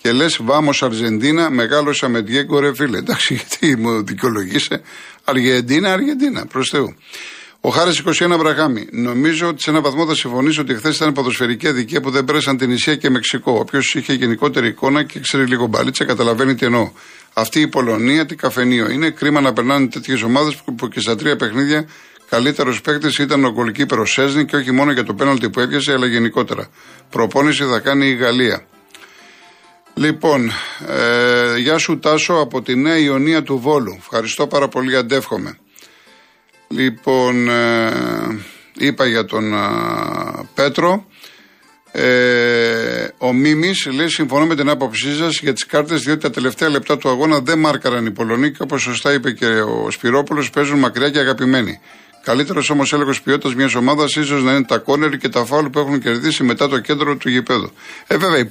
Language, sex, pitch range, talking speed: Greek, male, 125-150 Hz, 145 wpm